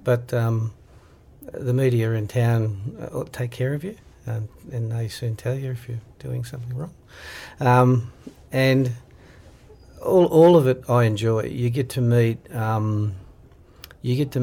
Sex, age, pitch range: male, 50-69, 110-130 Hz